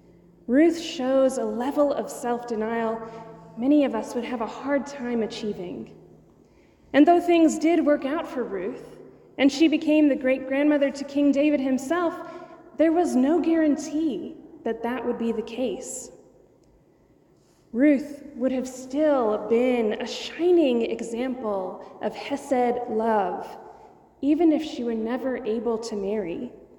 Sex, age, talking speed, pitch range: female, 20-39, 135 wpm, 235-300 Hz